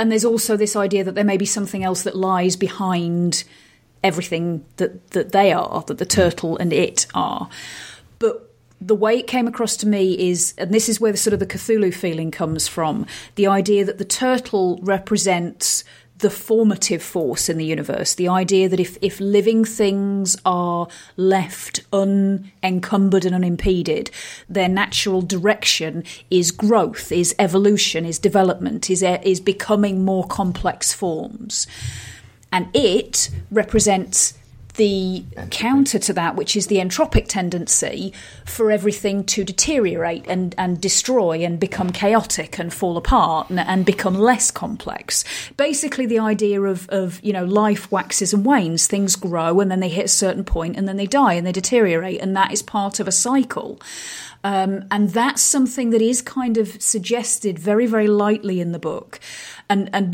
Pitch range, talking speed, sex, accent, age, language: 185-215 Hz, 165 wpm, female, British, 30-49, English